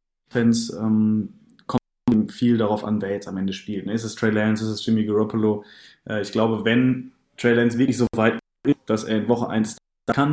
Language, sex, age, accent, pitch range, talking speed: German, male, 20-39, German, 110-120 Hz, 205 wpm